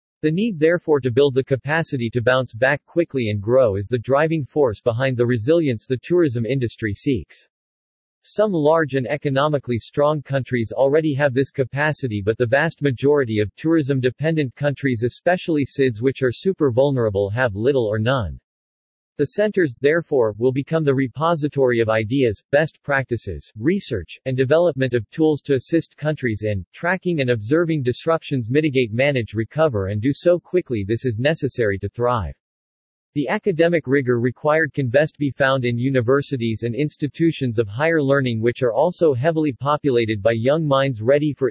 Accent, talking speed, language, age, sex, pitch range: American, 160 wpm, English, 40-59, male, 120-155 Hz